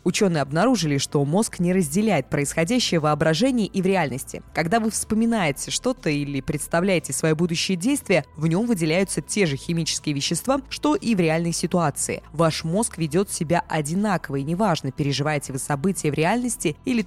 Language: Russian